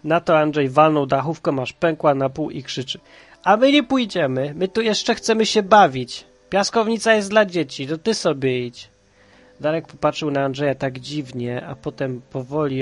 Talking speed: 180 wpm